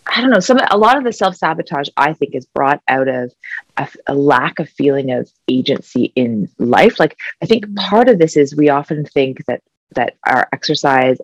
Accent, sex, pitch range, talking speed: American, female, 140-210 Hz, 210 wpm